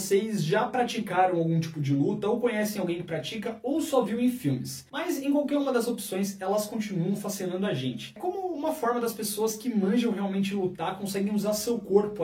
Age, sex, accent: 20-39, male, Brazilian